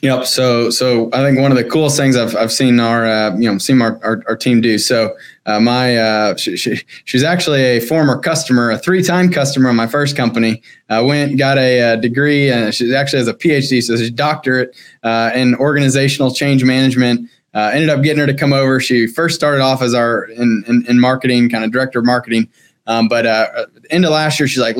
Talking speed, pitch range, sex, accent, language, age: 235 wpm, 120-145 Hz, male, American, English, 20-39